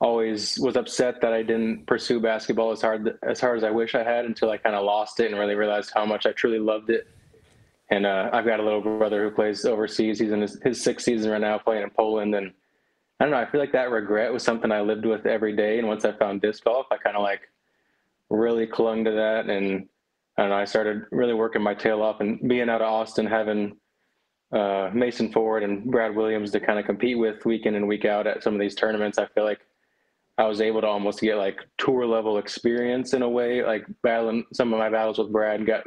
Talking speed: 245 wpm